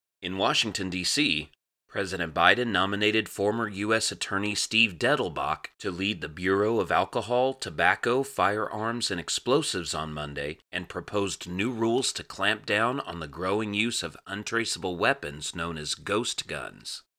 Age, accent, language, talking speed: 30-49, American, English, 145 wpm